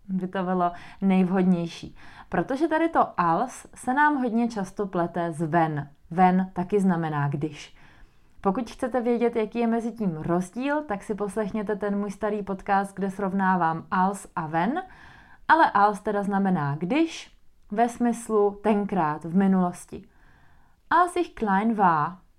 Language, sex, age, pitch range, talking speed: Czech, female, 30-49, 175-230 Hz, 140 wpm